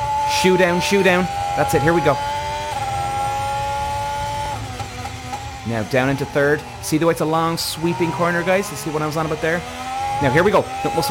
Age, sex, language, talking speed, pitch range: 30-49, male, English, 195 wpm, 130-185 Hz